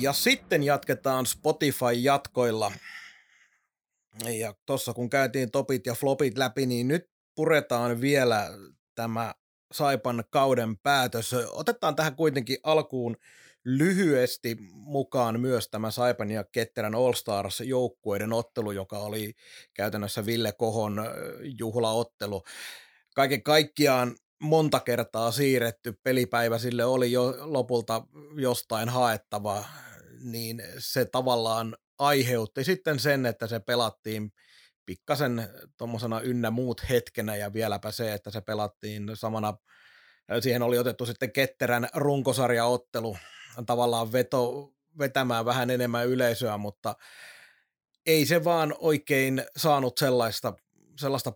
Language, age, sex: Finnish, 30-49, male